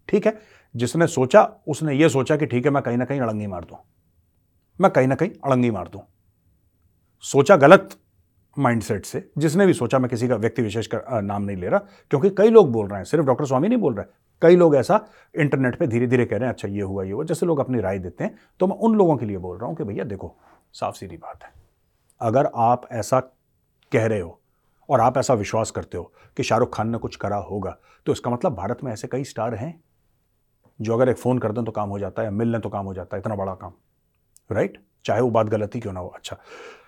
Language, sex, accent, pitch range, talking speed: Hindi, male, native, 100-150 Hz, 245 wpm